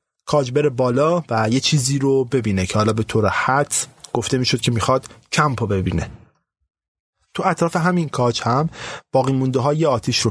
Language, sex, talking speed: Persian, male, 175 wpm